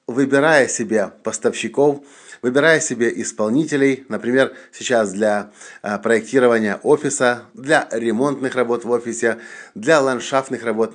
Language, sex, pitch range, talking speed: English, male, 105-135 Hz, 105 wpm